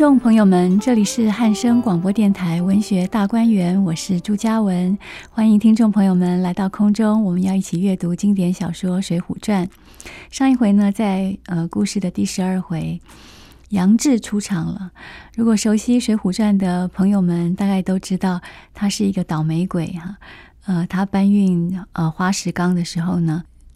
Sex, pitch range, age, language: female, 180-215 Hz, 30-49, Chinese